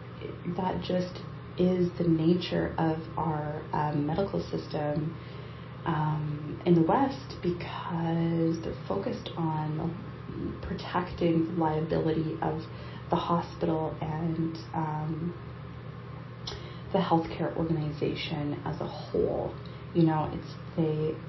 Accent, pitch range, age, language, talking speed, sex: American, 150-175 Hz, 30-49, English, 100 wpm, female